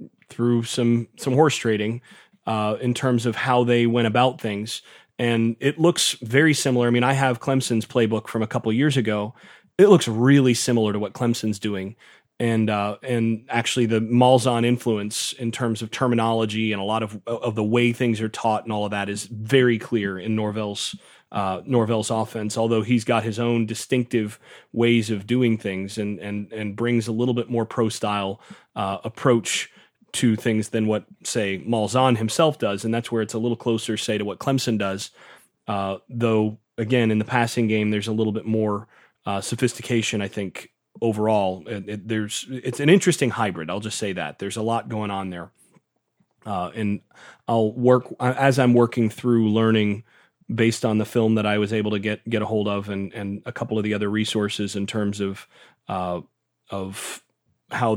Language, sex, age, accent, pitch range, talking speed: English, male, 30-49, American, 105-120 Hz, 190 wpm